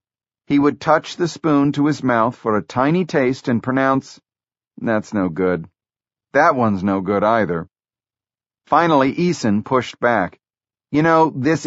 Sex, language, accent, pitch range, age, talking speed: male, English, American, 110-145 Hz, 50-69, 150 wpm